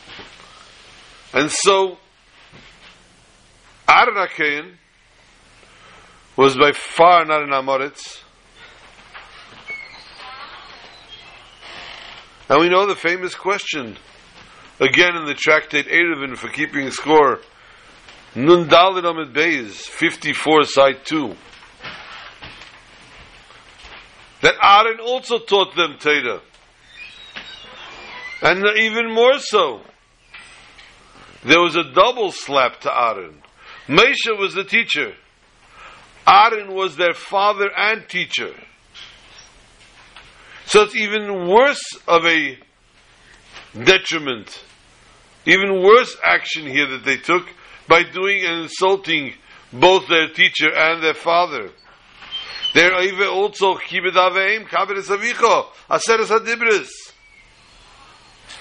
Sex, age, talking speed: male, 60-79, 90 wpm